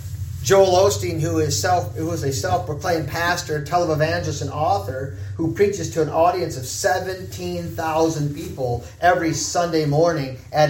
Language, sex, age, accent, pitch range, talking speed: English, male, 40-59, American, 125-165 Hz, 140 wpm